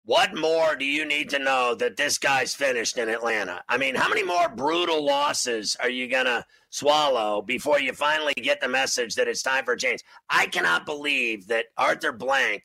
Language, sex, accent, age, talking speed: English, male, American, 50-69, 205 wpm